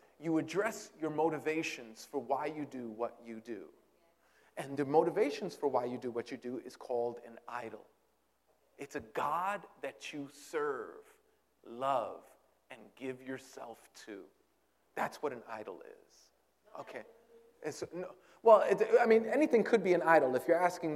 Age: 40-59